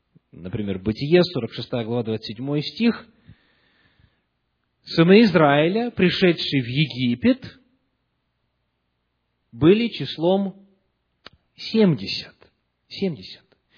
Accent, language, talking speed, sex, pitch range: native, Russian, 65 wpm, male, 120-185 Hz